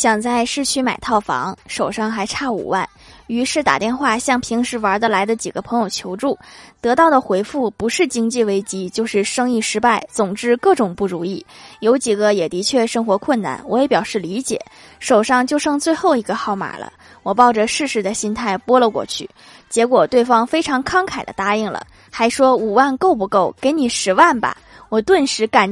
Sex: female